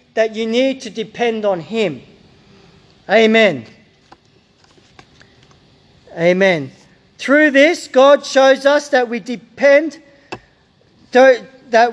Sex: male